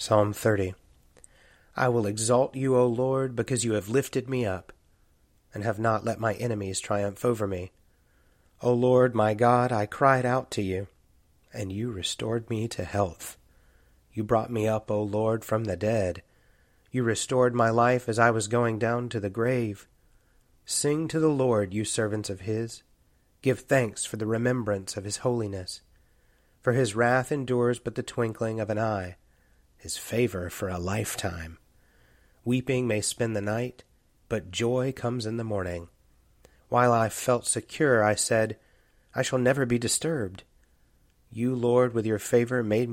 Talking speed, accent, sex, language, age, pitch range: 165 wpm, American, male, English, 30-49, 100-125 Hz